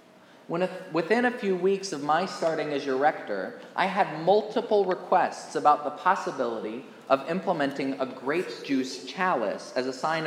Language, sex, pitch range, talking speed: English, male, 140-185 Hz, 150 wpm